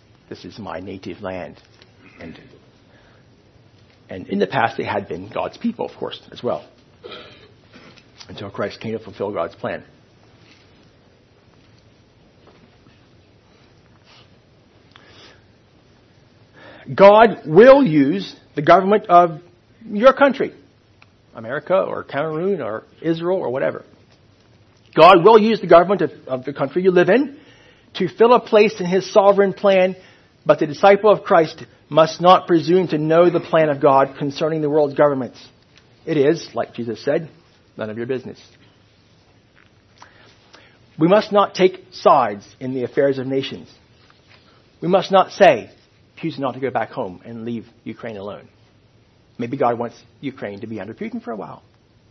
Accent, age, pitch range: American, 60-79, 110-170 Hz